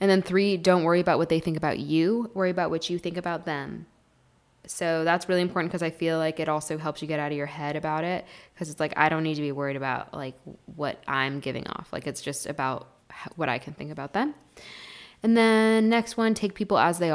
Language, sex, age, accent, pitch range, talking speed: English, female, 10-29, American, 145-175 Hz, 245 wpm